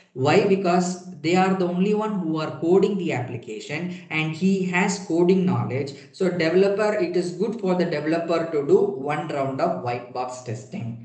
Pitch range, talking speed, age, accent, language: 130-175 Hz, 180 wpm, 20-39, Indian, English